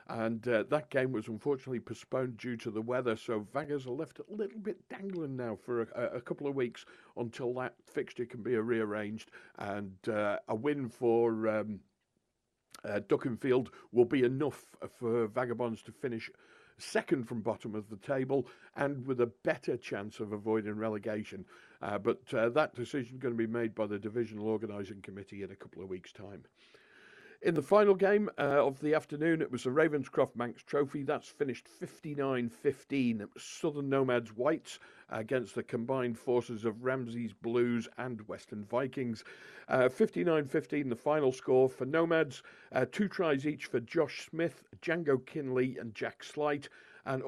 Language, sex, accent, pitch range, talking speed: English, male, British, 115-145 Hz, 170 wpm